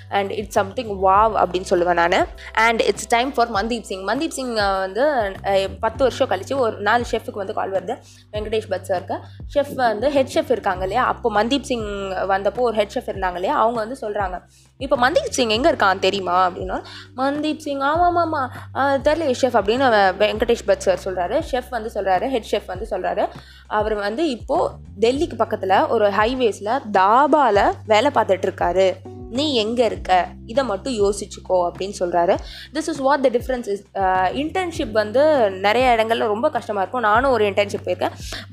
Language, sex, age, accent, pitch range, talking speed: Tamil, female, 20-39, native, 195-265 Hz, 160 wpm